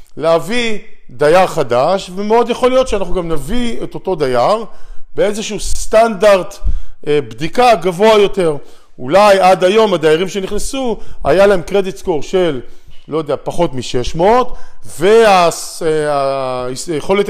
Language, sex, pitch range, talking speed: Hebrew, male, 155-220 Hz, 110 wpm